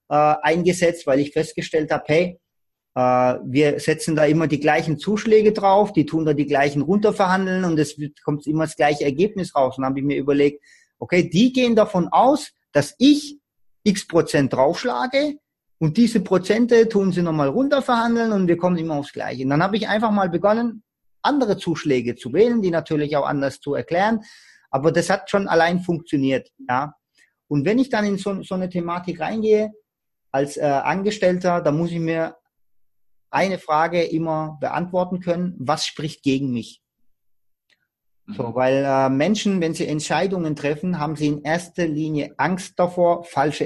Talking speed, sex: 170 wpm, male